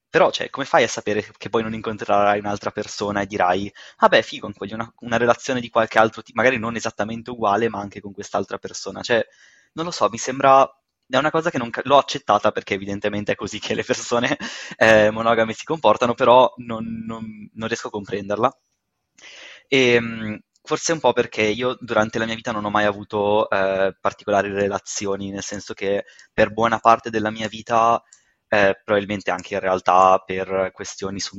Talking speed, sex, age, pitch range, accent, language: 185 wpm, male, 20-39, 100-115 Hz, native, Italian